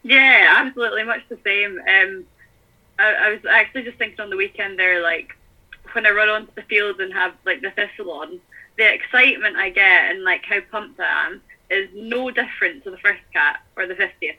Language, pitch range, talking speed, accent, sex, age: English, 185-250 Hz, 205 wpm, British, female, 10-29